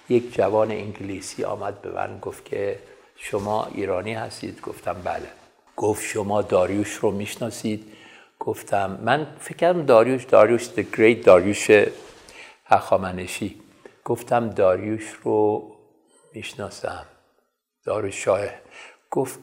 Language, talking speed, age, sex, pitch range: Persian, 105 wpm, 60-79, male, 110-155 Hz